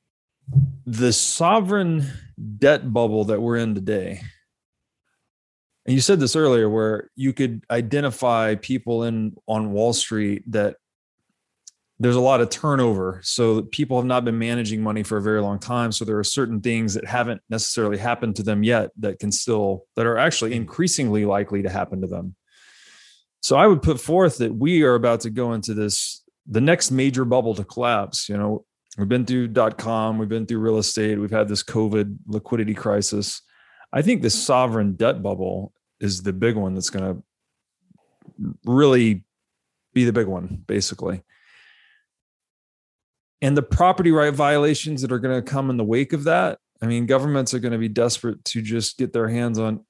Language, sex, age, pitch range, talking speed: English, male, 30-49, 105-130 Hz, 180 wpm